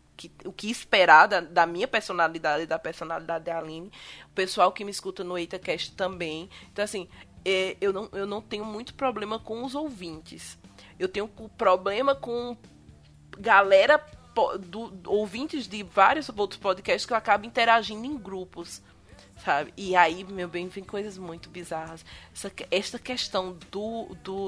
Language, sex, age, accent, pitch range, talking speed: Portuguese, female, 20-39, Brazilian, 175-255 Hz, 145 wpm